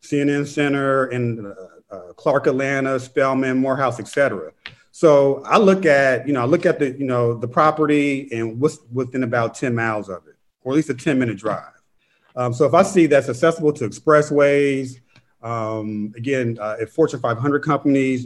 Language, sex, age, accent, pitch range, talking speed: English, male, 40-59, American, 115-140 Hz, 185 wpm